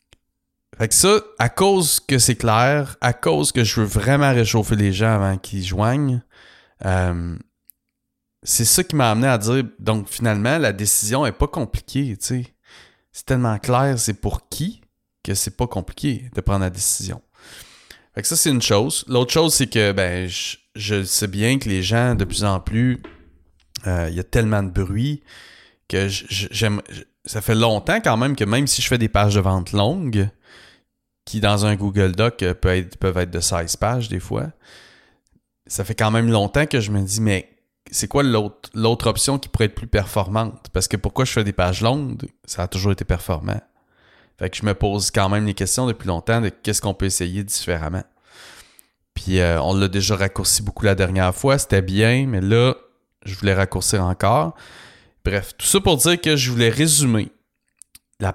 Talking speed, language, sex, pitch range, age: 195 wpm, English, male, 95-125 Hz, 30-49